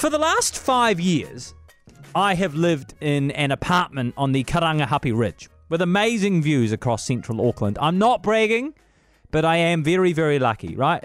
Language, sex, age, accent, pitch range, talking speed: English, male, 30-49, Australian, 120-165 Hz, 170 wpm